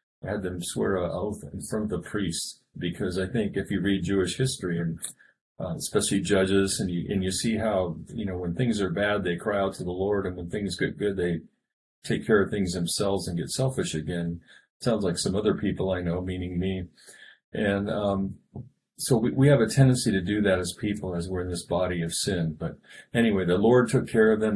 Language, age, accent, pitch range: English, 40-59, American, 85-105 Hz